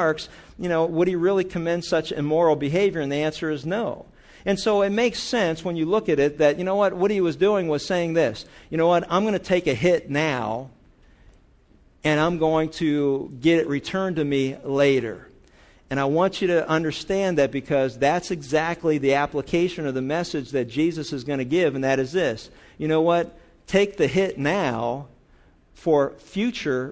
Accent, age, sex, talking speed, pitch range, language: American, 50-69, male, 200 wpm, 145-175 Hz, English